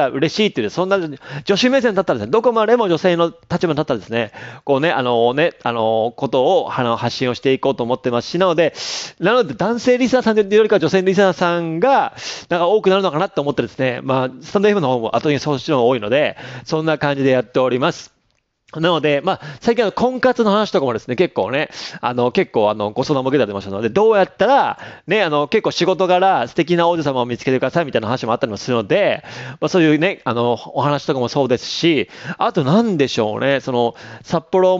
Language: Japanese